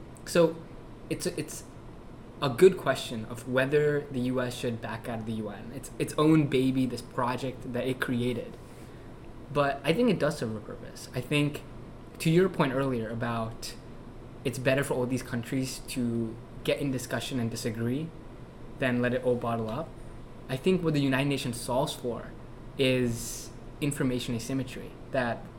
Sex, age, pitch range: male, 20-39, 120-140 Hz